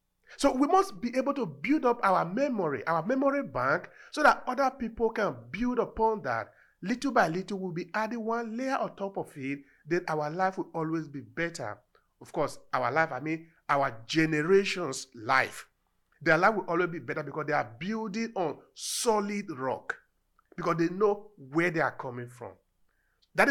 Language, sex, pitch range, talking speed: English, male, 145-215 Hz, 180 wpm